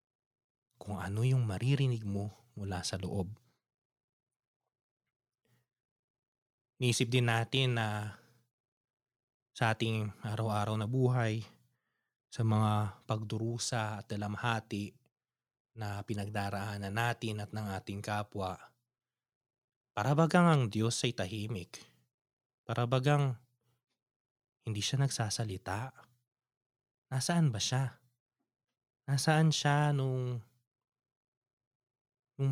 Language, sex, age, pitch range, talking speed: Filipino, male, 20-39, 110-130 Hz, 85 wpm